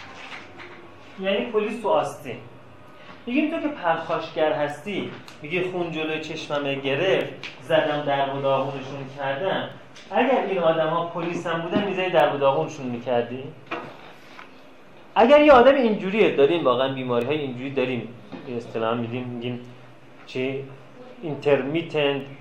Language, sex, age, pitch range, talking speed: Persian, male, 30-49, 130-175 Hz, 125 wpm